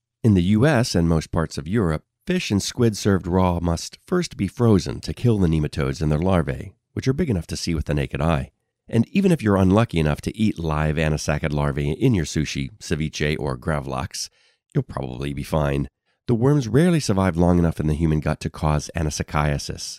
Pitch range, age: 75-105 Hz, 40-59